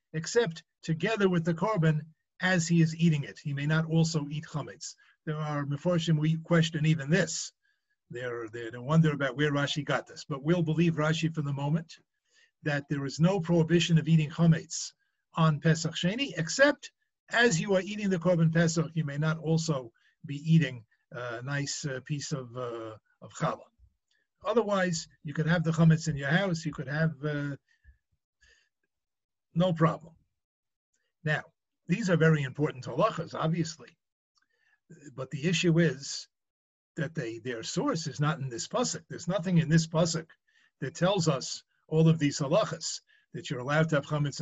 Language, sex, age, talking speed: English, male, 50-69, 170 wpm